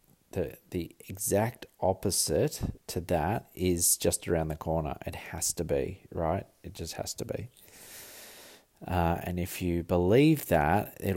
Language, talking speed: English, 150 wpm